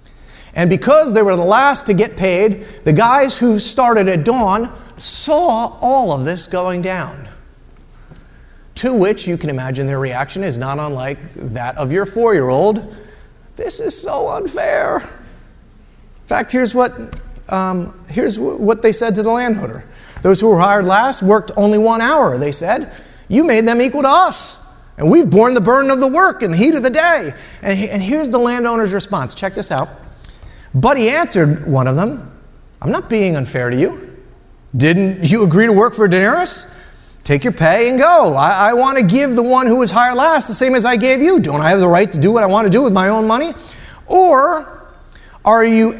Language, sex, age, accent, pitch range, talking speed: English, male, 30-49, American, 180-255 Hz, 195 wpm